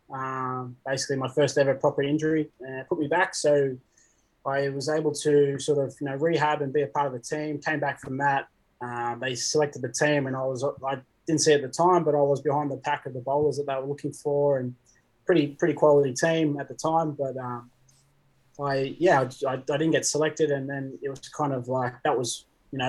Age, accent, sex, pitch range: 20-39, Australian, male, 130-150 Hz